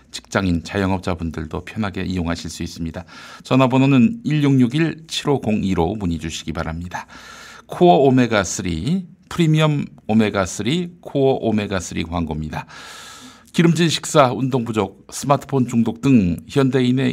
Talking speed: 90 wpm